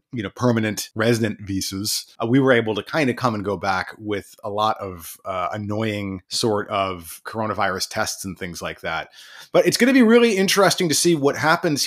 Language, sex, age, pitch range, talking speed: English, male, 30-49, 110-160 Hz, 205 wpm